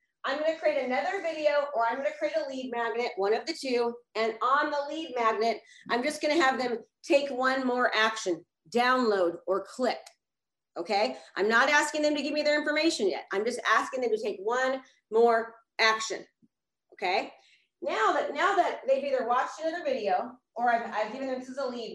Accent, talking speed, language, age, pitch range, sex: American, 205 wpm, English, 30-49, 230-295 Hz, female